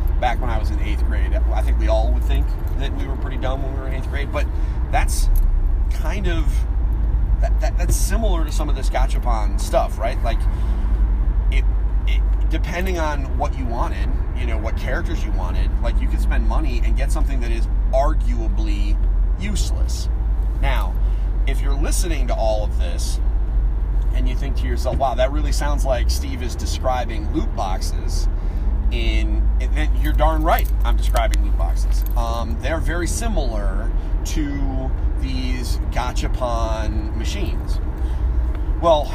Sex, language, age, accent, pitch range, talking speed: male, English, 30-49, American, 65-85 Hz, 165 wpm